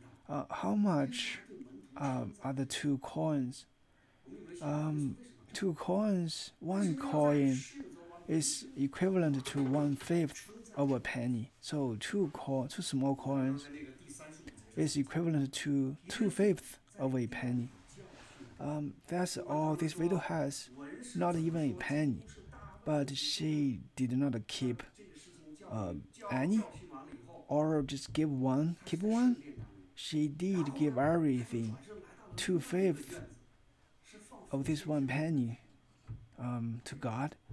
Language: Chinese